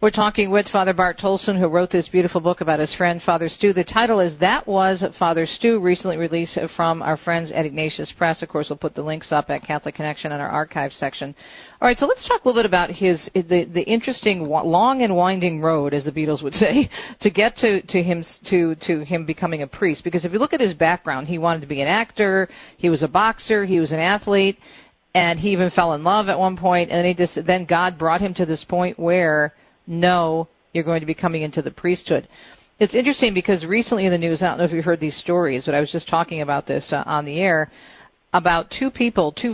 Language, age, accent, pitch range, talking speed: English, 50-69, American, 160-190 Hz, 240 wpm